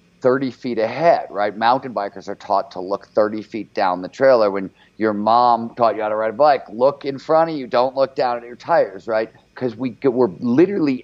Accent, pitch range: American, 100-130 Hz